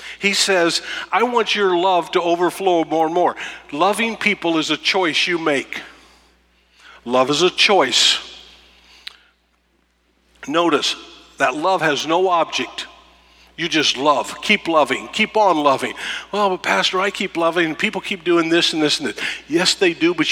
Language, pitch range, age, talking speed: English, 105-175 Hz, 50-69, 155 wpm